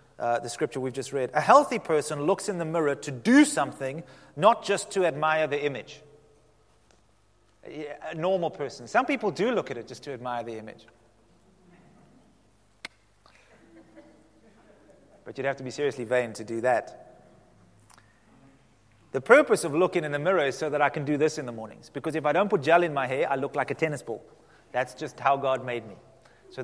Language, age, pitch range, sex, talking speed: English, 30-49, 130-180 Hz, male, 195 wpm